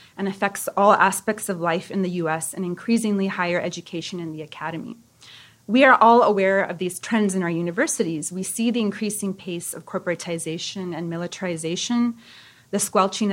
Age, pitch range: 30-49, 180-220 Hz